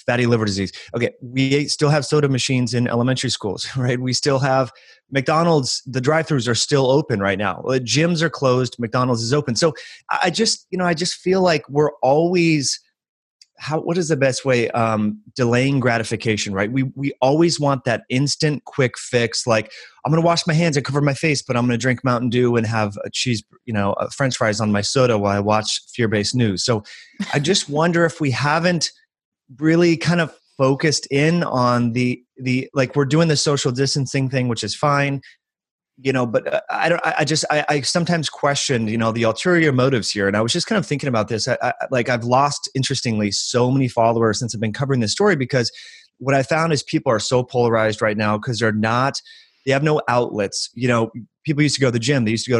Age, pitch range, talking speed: 30-49, 120-150 Hz, 220 wpm